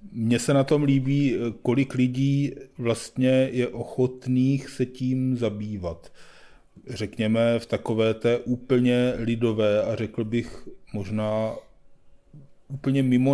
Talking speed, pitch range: 110 wpm, 100-115 Hz